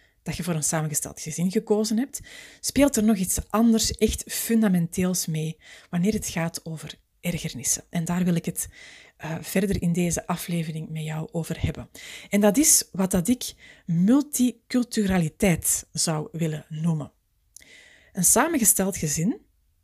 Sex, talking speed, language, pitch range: female, 140 wpm, Dutch, 170-225 Hz